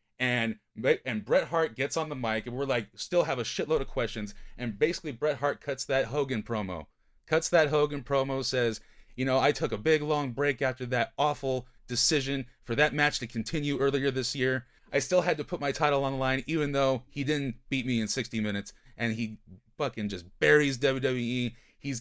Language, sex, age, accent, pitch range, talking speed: English, male, 30-49, American, 120-145 Hz, 205 wpm